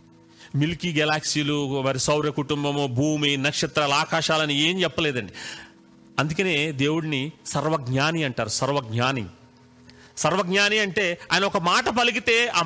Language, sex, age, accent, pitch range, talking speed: Telugu, male, 40-59, native, 125-210 Hz, 105 wpm